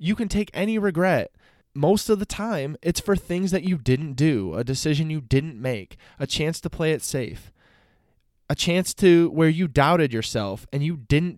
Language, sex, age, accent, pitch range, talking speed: English, male, 20-39, American, 115-160 Hz, 195 wpm